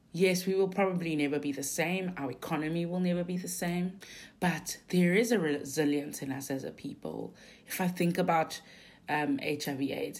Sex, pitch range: female, 150-185 Hz